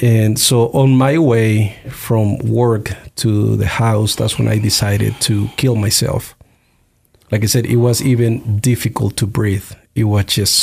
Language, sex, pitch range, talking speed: English, male, 100-120 Hz, 165 wpm